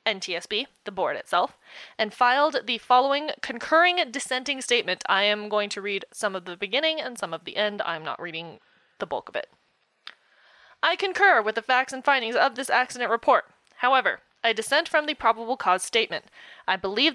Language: English